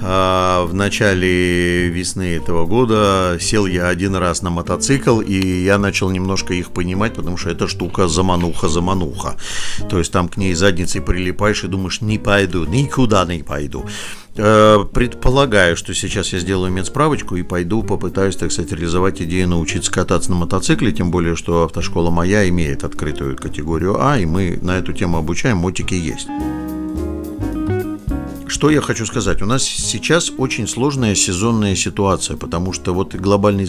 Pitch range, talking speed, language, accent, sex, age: 90-105 Hz, 150 wpm, Russian, native, male, 50-69